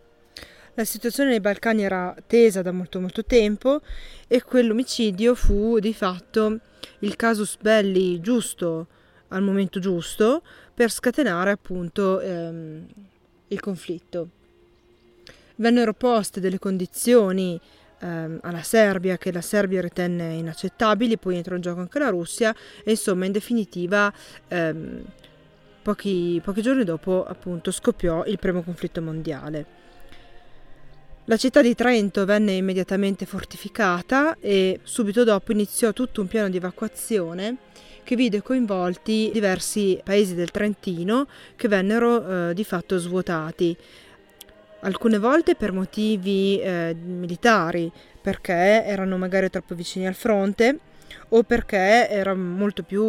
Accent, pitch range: native, 180-220 Hz